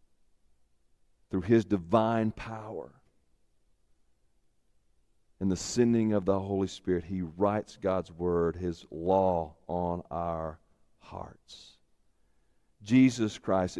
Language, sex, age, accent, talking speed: English, male, 50-69, American, 95 wpm